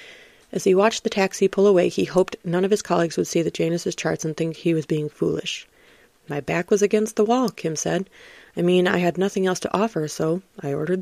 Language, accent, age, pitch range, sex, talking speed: English, American, 30-49, 165-220 Hz, female, 235 wpm